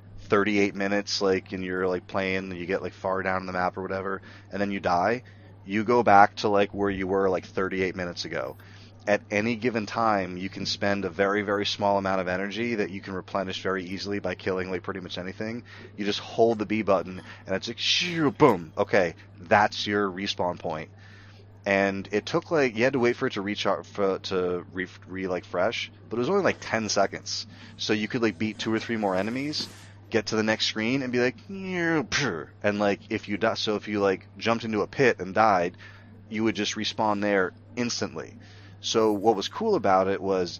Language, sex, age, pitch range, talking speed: English, male, 30-49, 95-110 Hz, 215 wpm